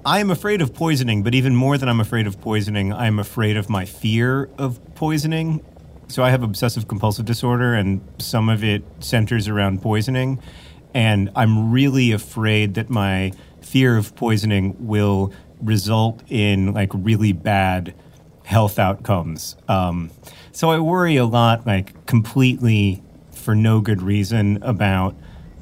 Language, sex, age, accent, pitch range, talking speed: English, male, 30-49, American, 95-120 Hz, 145 wpm